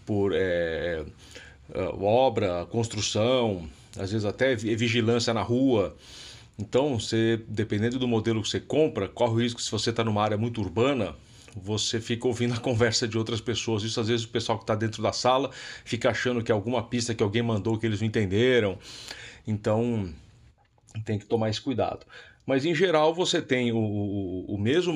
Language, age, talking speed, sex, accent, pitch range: Portuguese, 40-59, 175 wpm, male, Brazilian, 105-120 Hz